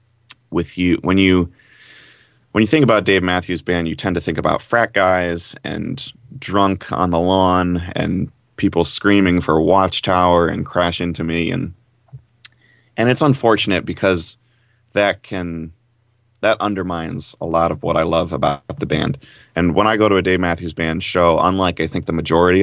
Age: 20-39